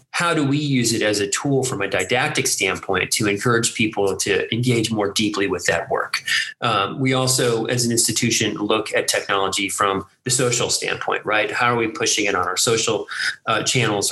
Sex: male